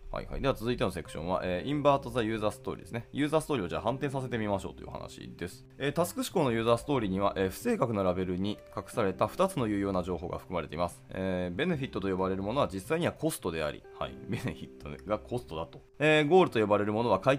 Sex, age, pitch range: male, 20-39, 90-145 Hz